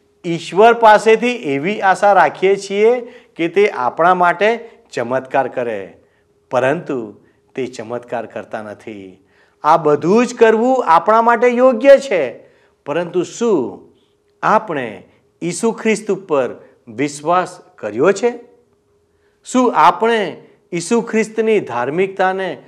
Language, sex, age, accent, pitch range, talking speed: Gujarati, male, 50-69, native, 160-235 Hz, 105 wpm